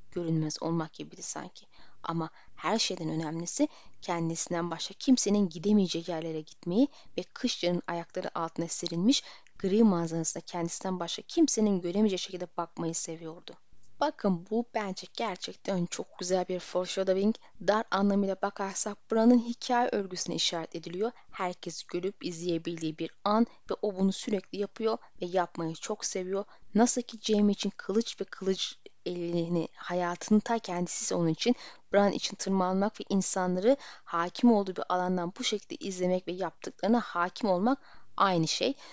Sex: female